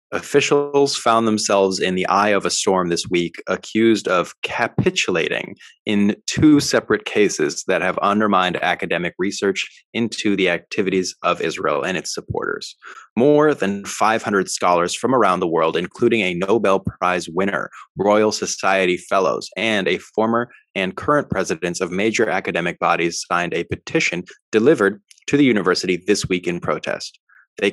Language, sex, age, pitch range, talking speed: English, male, 20-39, 95-120 Hz, 150 wpm